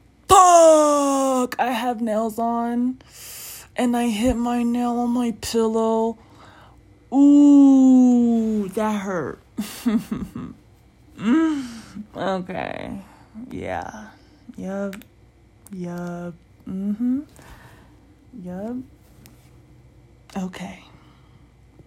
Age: 20-39